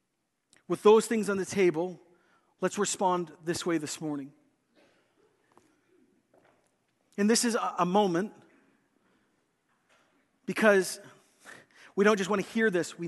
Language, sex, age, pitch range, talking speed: English, male, 40-59, 160-210 Hz, 120 wpm